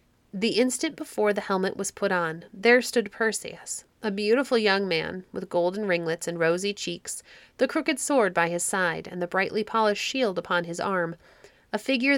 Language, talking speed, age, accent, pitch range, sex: English, 180 wpm, 30-49, American, 180-250 Hz, female